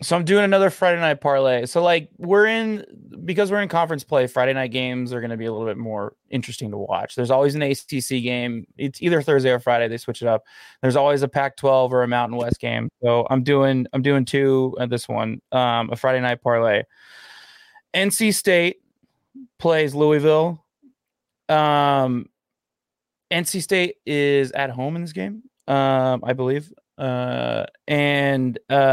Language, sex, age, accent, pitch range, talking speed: English, male, 20-39, American, 130-170 Hz, 180 wpm